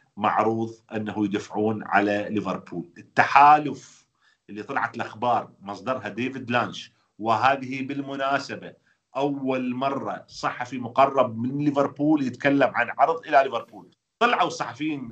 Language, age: Arabic, 40-59